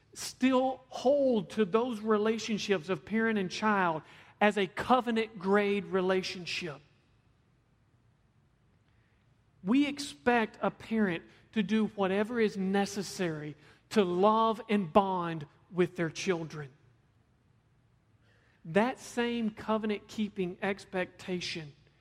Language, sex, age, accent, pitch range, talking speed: English, male, 40-59, American, 150-215 Hz, 95 wpm